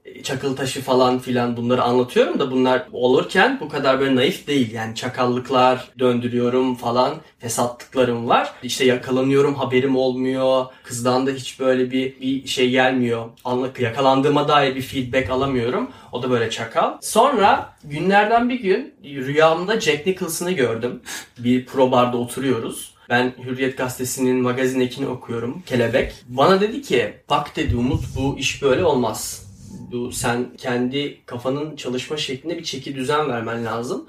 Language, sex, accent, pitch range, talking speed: Turkish, male, native, 125-140 Hz, 145 wpm